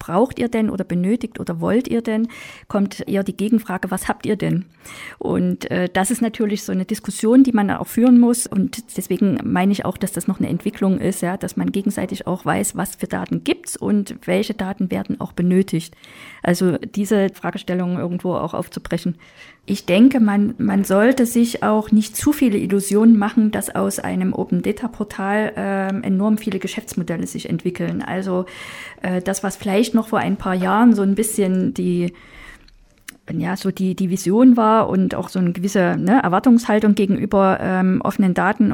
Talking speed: 175 wpm